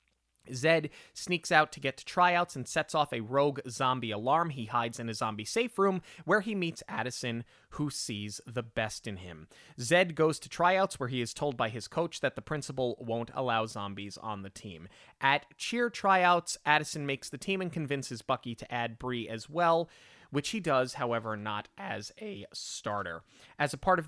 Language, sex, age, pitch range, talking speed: English, male, 20-39, 115-150 Hz, 195 wpm